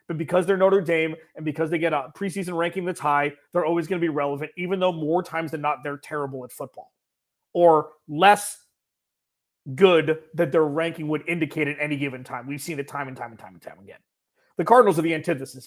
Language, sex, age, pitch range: English, male, 30-49, 150-180 Hz